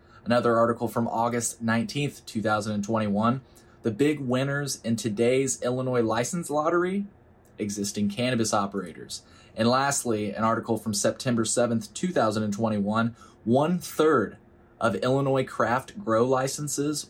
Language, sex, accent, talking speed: English, male, American, 110 wpm